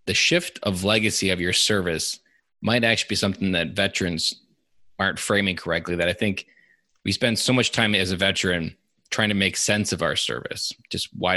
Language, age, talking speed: English, 20-39, 190 wpm